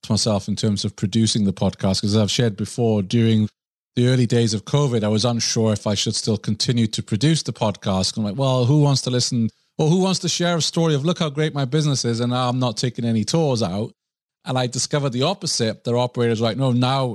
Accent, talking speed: British, 250 wpm